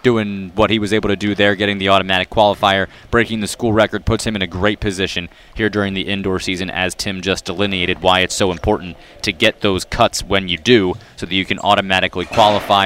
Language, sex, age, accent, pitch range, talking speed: English, male, 30-49, American, 100-130 Hz, 225 wpm